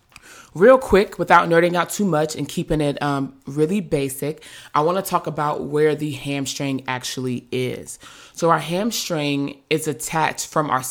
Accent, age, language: American, 20-39, English